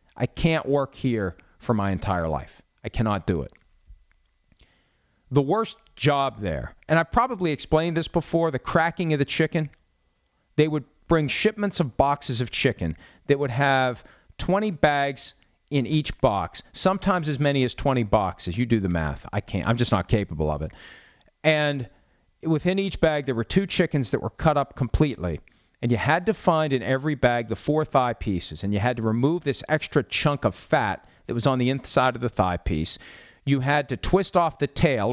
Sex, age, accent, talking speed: male, 40-59, American, 195 wpm